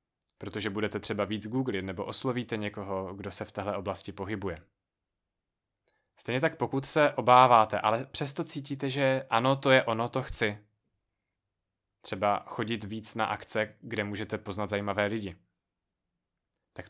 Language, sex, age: Czech, male, 20-39